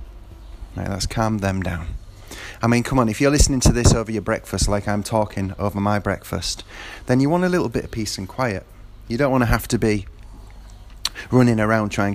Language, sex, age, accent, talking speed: English, male, 30-49, British, 210 wpm